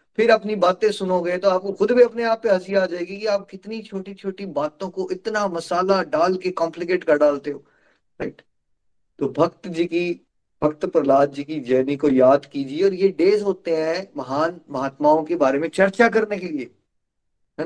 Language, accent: Hindi, native